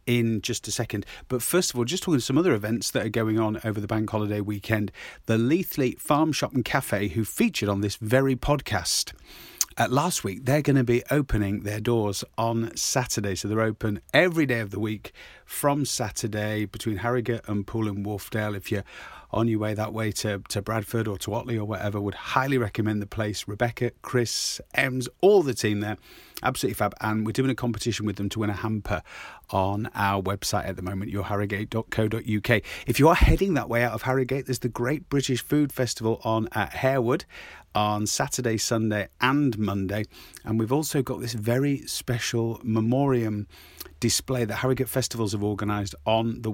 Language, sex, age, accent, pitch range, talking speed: English, male, 30-49, British, 105-125 Hz, 190 wpm